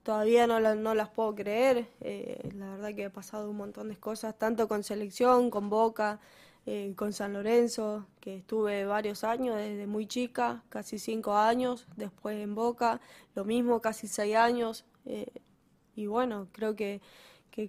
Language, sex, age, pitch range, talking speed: Spanish, female, 10-29, 205-230 Hz, 170 wpm